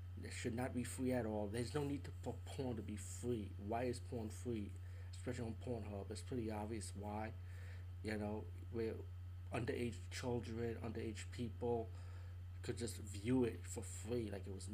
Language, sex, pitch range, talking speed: English, male, 90-115 Hz, 170 wpm